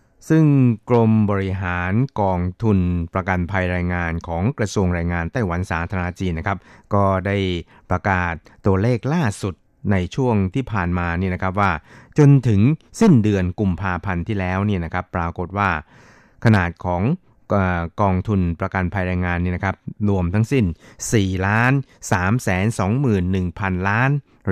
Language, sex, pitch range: Thai, male, 90-110 Hz